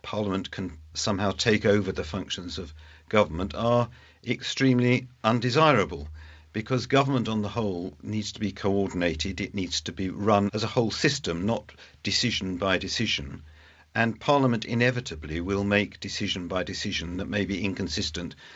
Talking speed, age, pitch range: 150 wpm, 50-69, 85-115 Hz